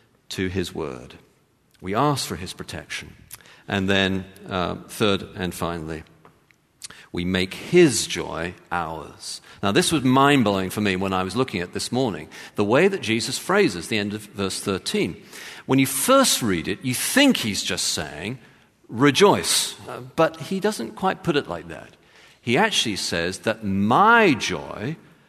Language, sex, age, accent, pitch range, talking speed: English, male, 50-69, British, 95-140 Hz, 160 wpm